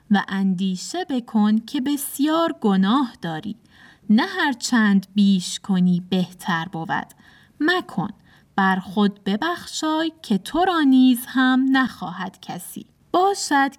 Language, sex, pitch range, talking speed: Persian, female, 200-270 Hz, 115 wpm